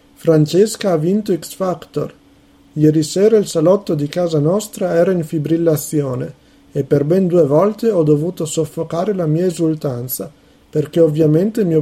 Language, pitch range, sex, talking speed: Italian, 150-180 Hz, male, 140 wpm